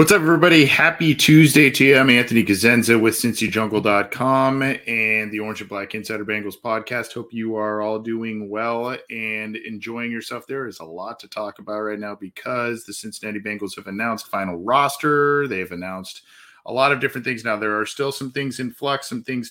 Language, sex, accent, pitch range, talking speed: English, male, American, 110-125 Hz, 195 wpm